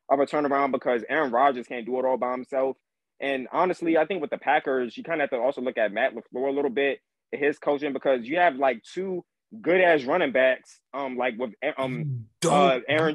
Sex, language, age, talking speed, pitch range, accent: male, English, 20-39, 220 wpm, 130-170 Hz, American